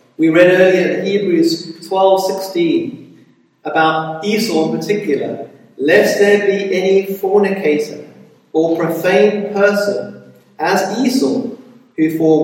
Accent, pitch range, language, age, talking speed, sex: British, 170-275 Hz, English, 40-59, 110 wpm, male